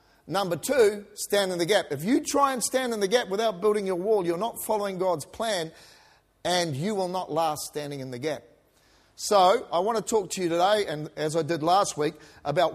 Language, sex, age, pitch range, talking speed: English, male, 40-59, 170-245 Hz, 220 wpm